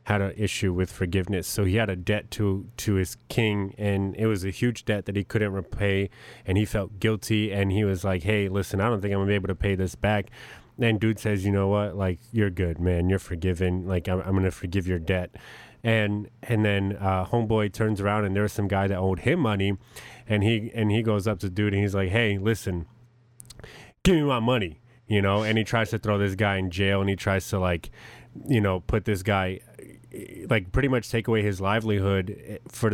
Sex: male